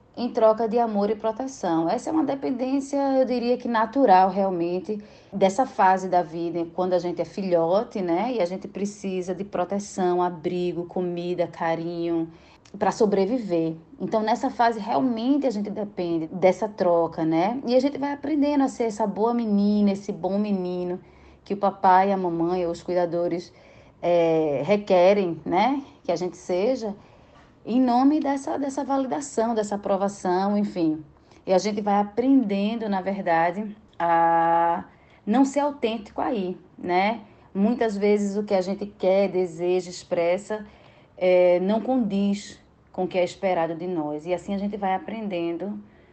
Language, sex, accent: Portuguese, female, Brazilian